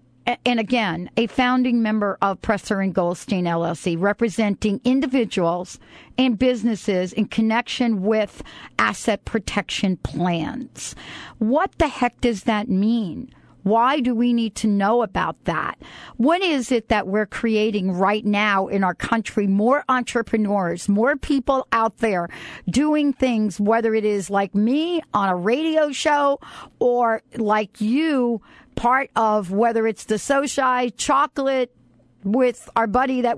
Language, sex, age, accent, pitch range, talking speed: English, female, 50-69, American, 210-255 Hz, 140 wpm